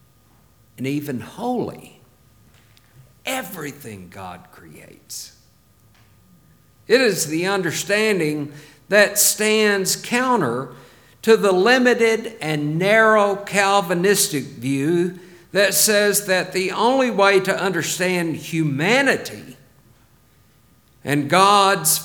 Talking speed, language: 85 wpm, English